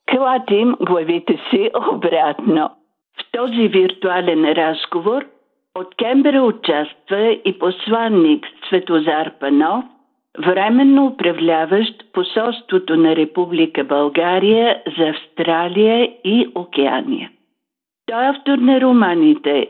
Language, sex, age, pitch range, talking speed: Bulgarian, female, 50-69, 155-245 Hz, 90 wpm